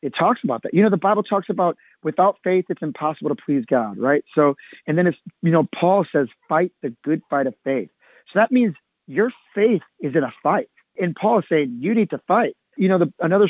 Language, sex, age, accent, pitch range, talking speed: English, male, 30-49, American, 145-205 Hz, 235 wpm